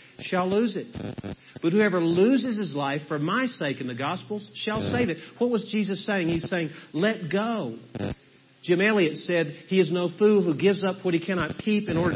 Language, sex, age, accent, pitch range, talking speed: English, male, 50-69, American, 130-185 Hz, 200 wpm